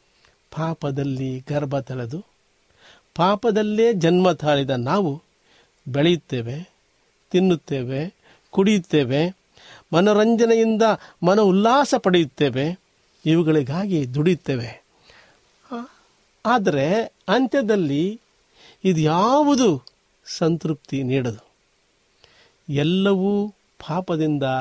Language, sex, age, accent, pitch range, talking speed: Kannada, male, 50-69, native, 145-205 Hz, 60 wpm